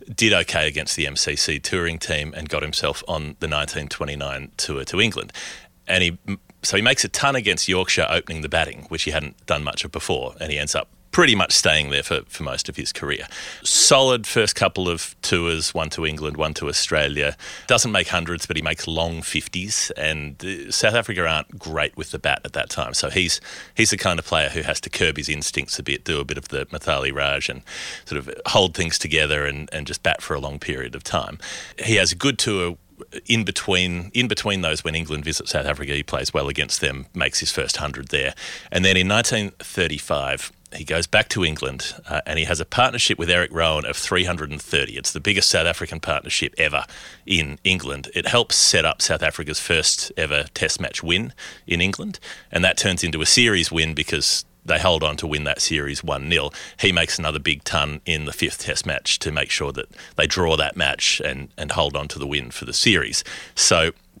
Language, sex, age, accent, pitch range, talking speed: English, male, 30-49, Australian, 75-90 Hz, 215 wpm